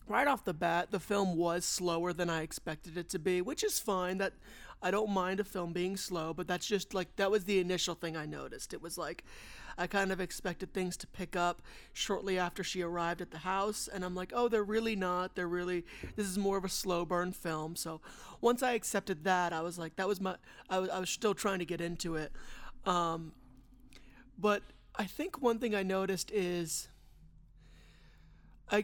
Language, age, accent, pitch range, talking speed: English, 30-49, American, 170-205 Hz, 210 wpm